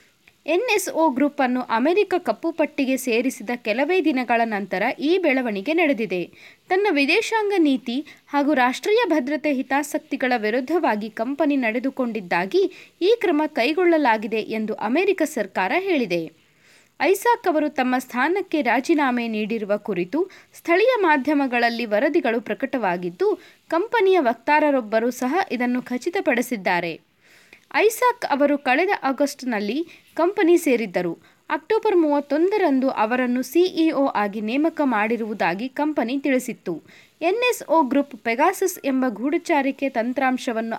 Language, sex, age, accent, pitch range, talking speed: Kannada, female, 20-39, native, 235-335 Hz, 95 wpm